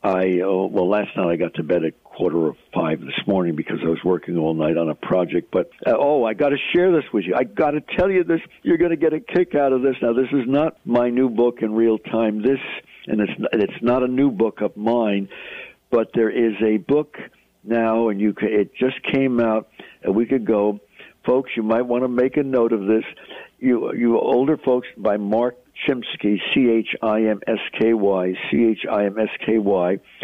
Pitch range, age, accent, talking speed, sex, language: 105-140 Hz, 60-79, American, 200 wpm, male, English